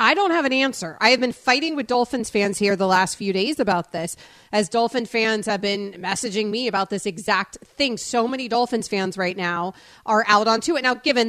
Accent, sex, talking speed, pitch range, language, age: American, female, 225 wpm, 205-255 Hz, English, 30-49